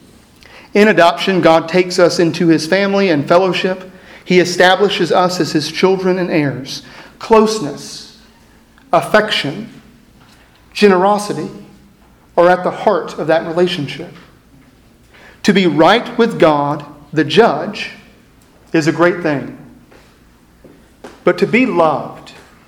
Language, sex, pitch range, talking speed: English, male, 155-195 Hz, 115 wpm